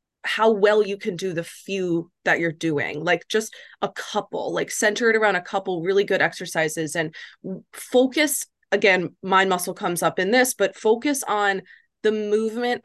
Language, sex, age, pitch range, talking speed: English, female, 20-39, 180-225 Hz, 175 wpm